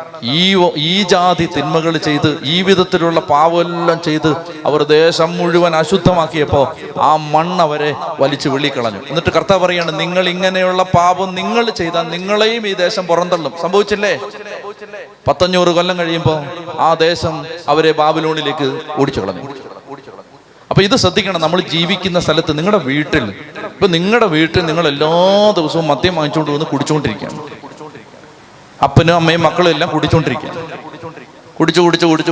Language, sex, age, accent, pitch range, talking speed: Malayalam, male, 30-49, native, 140-175 Hz, 120 wpm